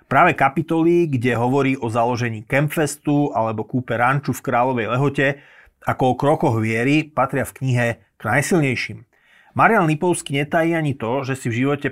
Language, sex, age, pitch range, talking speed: Slovak, male, 30-49, 120-140 Hz, 155 wpm